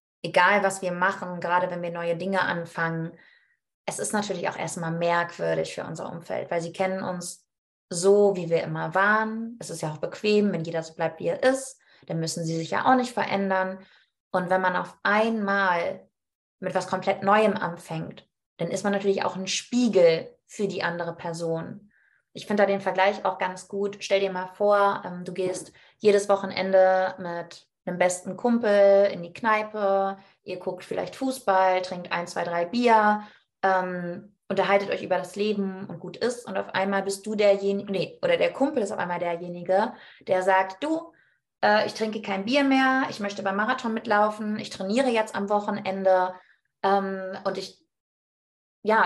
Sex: female